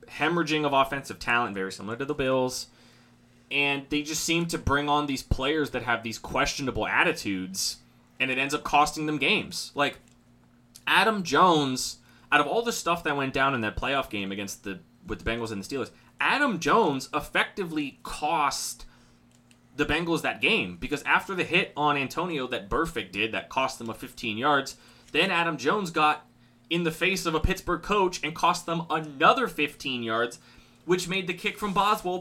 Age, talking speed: 20-39, 185 wpm